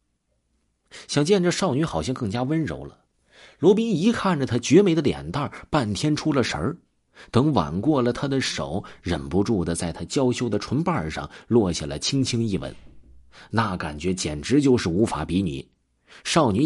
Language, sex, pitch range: Chinese, male, 90-140 Hz